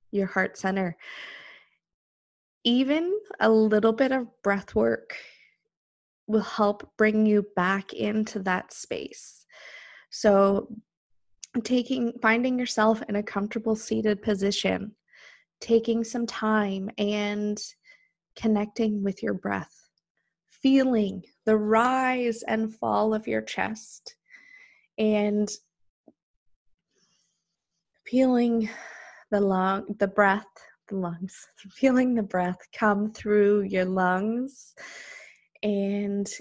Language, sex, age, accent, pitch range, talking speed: English, female, 20-39, American, 195-225 Hz, 95 wpm